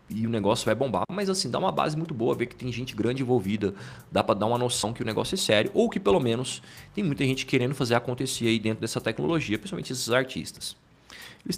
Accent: Brazilian